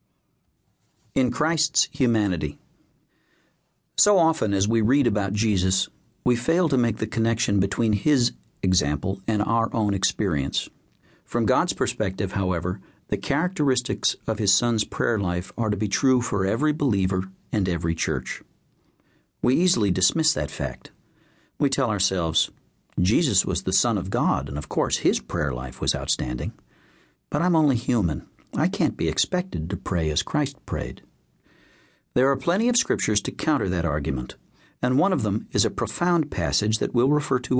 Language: English